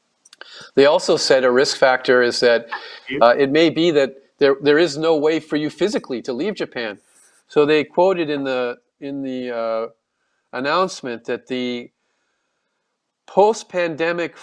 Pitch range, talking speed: 120-155 Hz, 155 wpm